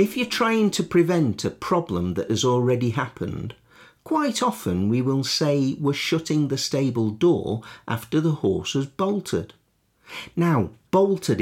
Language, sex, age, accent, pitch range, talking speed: English, male, 50-69, British, 110-170 Hz, 145 wpm